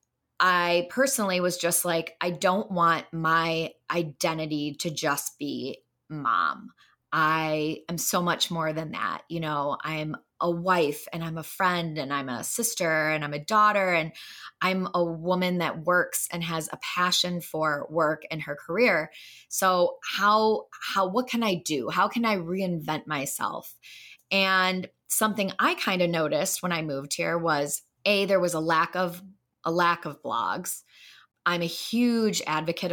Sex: female